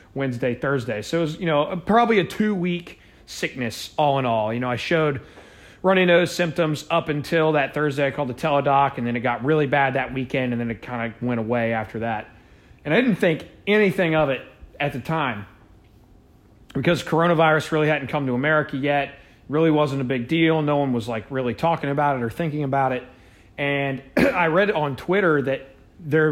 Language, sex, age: English, male, 30-49